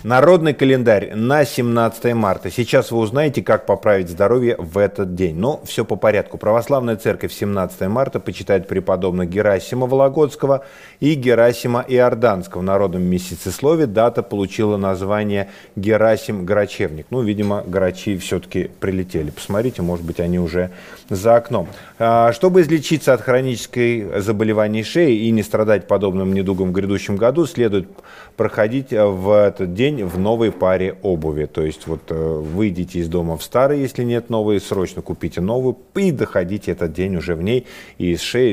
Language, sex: Russian, male